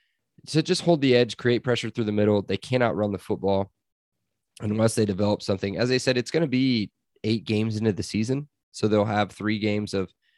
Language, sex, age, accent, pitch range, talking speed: English, male, 20-39, American, 95-115 Hz, 215 wpm